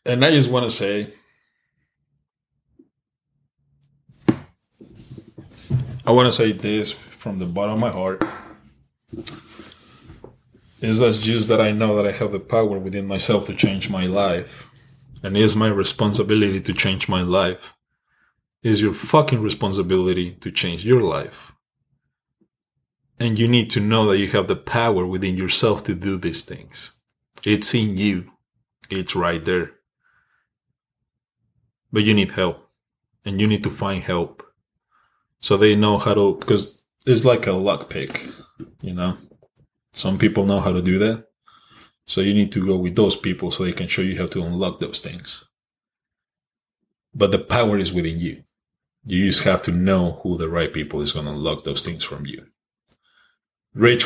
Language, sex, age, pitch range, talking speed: English, male, 20-39, 95-115 Hz, 160 wpm